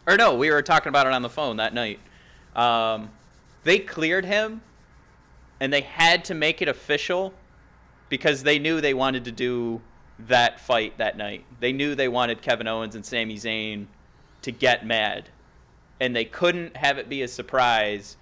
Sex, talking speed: male, 180 wpm